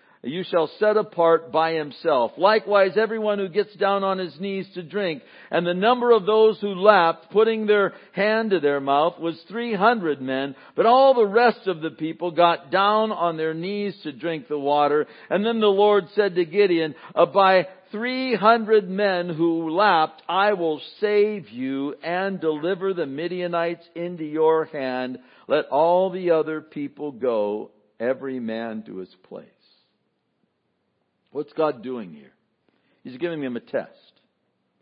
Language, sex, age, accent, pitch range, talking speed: English, male, 60-79, American, 155-210 Hz, 160 wpm